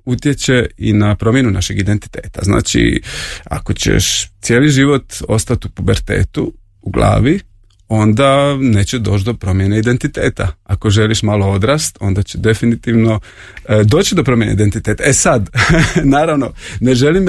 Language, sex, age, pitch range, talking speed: Croatian, male, 30-49, 100-135 Hz, 130 wpm